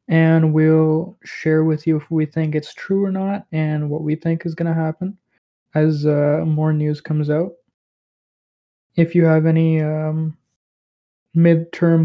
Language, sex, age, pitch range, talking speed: English, male, 20-39, 155-170 Hz, 160 wpm